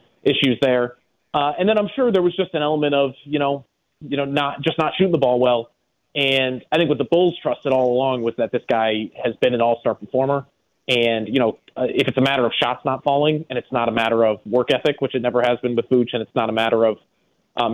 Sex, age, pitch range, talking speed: male, 30-49, 120-145 Hz, 255 wpm